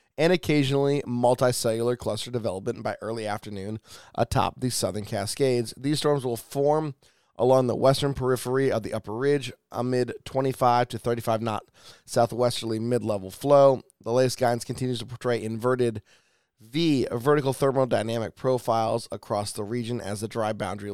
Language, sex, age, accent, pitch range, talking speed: English, male, 20-39, American, 110-130 Hz, 145 wpm